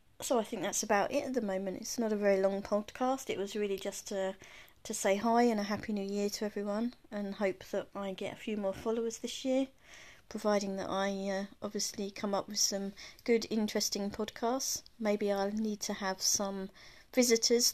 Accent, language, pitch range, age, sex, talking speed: British, English, 200-225 Hz, 30-49, female, 205 wpm